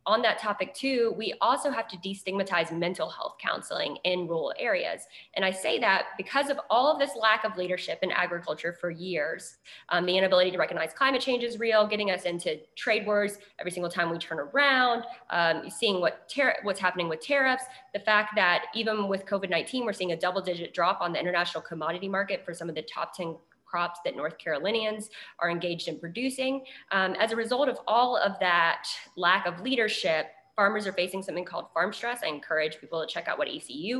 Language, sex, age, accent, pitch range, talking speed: English, female, 20-39, American, 180-235 Hz, 205 wpm